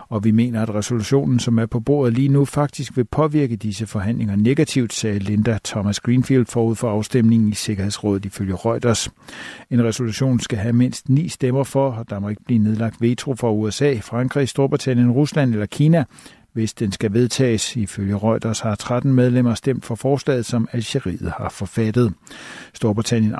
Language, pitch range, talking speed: Danish, 110-130 Hz, 170 wpm